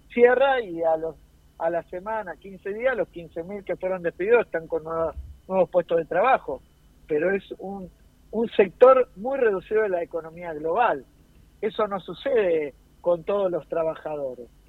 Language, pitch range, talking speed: Spanish, 165-215 Hz, 155 wpm